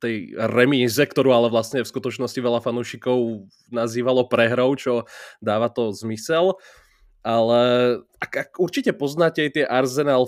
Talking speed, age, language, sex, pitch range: 135 wpm, 20-39, Slovak, male, 120-140 Hz